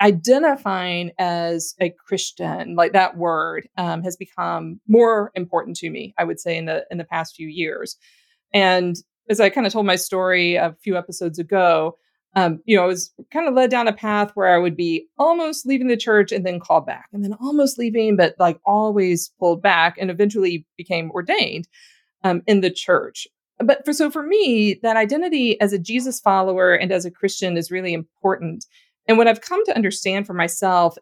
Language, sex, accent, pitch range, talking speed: English, female, American, 175-220 Hz, 195 wpm